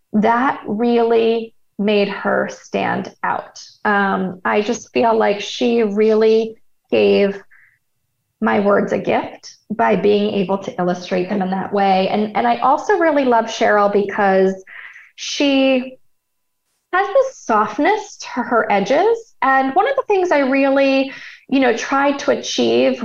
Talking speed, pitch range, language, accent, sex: 145 wpm, 210-270 Hz, English, American, female